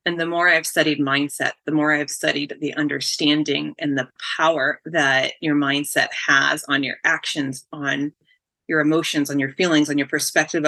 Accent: American